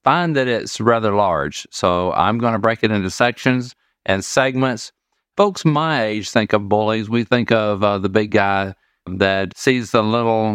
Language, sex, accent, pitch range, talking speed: English, male, American, 100-120 Hz, 180 wpm